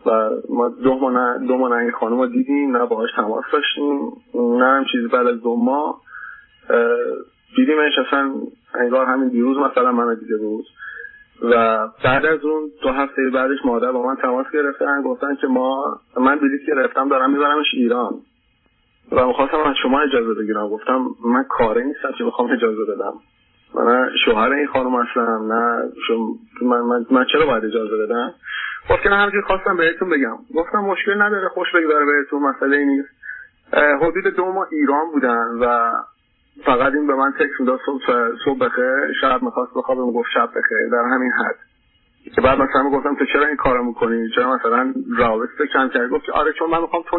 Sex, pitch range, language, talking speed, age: male, 125-200 Hz, Persian, 175 wpm, 30-49